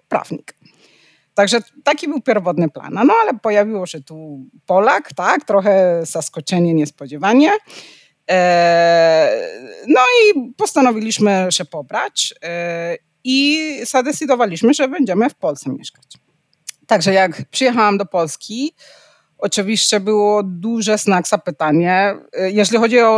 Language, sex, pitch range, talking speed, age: Polish, female, 170-240 Hz, 105 wpm, 30-49